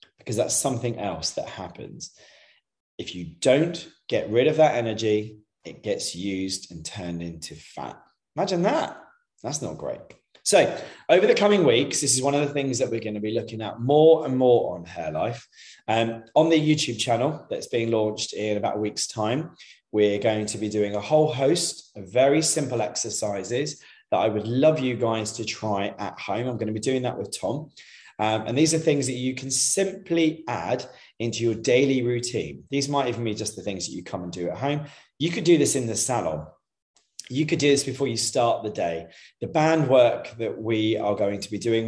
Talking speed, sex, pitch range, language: 205 wpm, male, 105-140 Hz, English